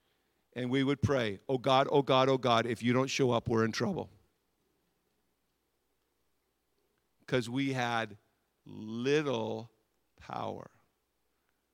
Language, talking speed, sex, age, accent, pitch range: English, 120 wpm, male, 50-69, American, 115-150 Hz